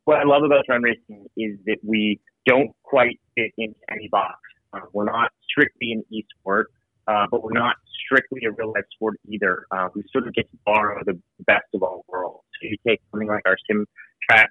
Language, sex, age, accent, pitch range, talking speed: English, male, 30-49, American, 105-120 Hz, 210 wpm